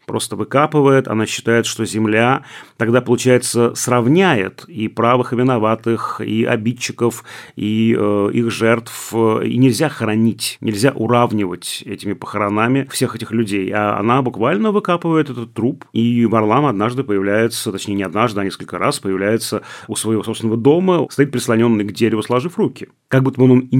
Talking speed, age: 155 wpm, 30-49